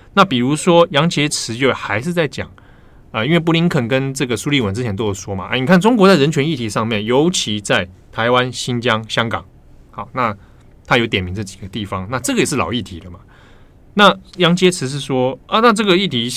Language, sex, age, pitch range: Chinese, male, 20-39, 100-140 Hz